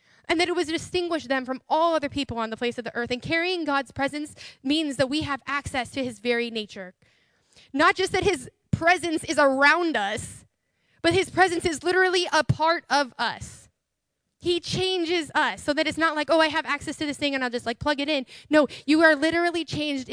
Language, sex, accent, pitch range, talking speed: English, female, American, 260-325 Hz, 220 wpm